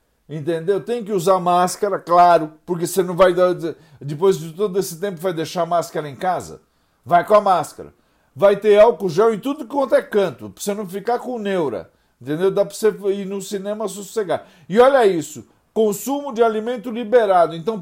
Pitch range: 160-220 Hz